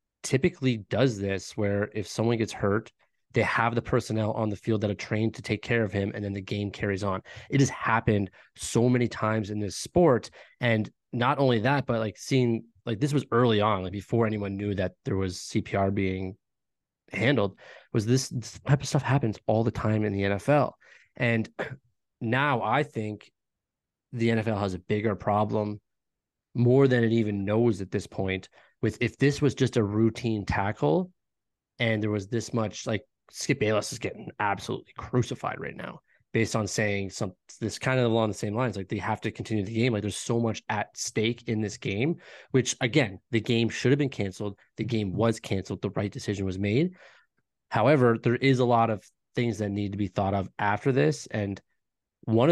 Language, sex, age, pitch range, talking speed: English, male, 20-39, 105-125 Hz, 200 wpm